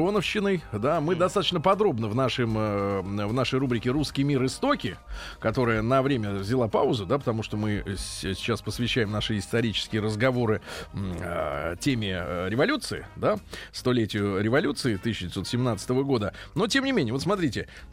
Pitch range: 115-150 Hz